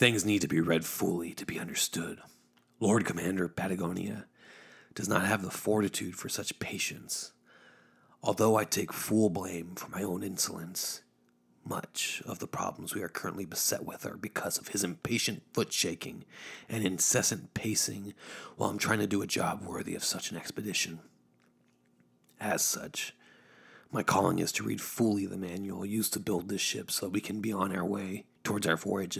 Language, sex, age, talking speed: English, male, 30-49, 175 wpm